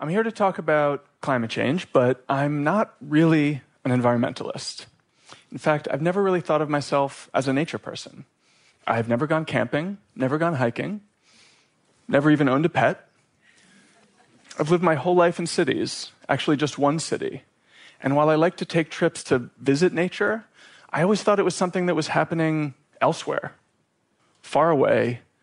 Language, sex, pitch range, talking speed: English, male, 125-160 Hz, 170 wpm